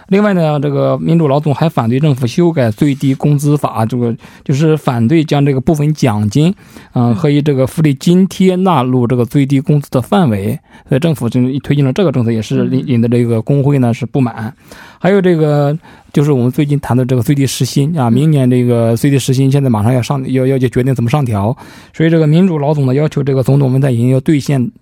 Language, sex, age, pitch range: Korean, male, 20-39, 125-155 Hz